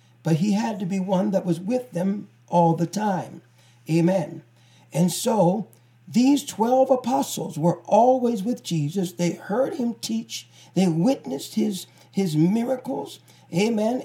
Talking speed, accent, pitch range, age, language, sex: 140 wpm, American, 160-230 Hz, 40-59, English, male